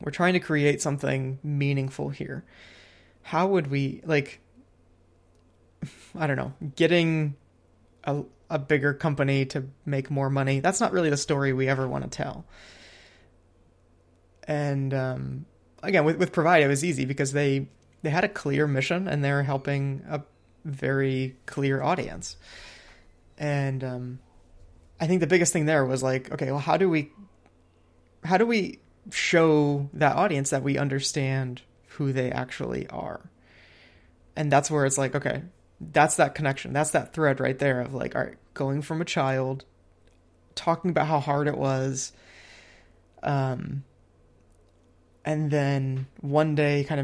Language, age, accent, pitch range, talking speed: English, 20-39, American, 90-150 Hz, 150 wpm